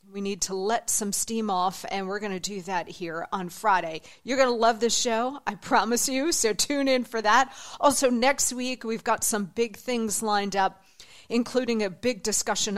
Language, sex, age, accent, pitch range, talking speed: English, female, 40-59, American, 195-240 Hz, 205 wpm